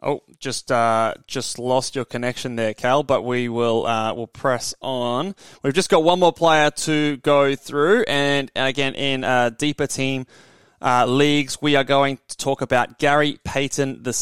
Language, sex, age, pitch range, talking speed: English, male, 20-39, 120-150 Hz, 175 wpm